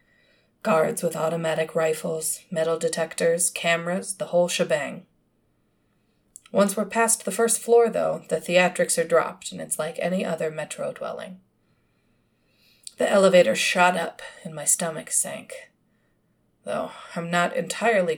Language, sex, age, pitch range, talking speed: English, female, 30-49, 165-210 Hz, 130 wpm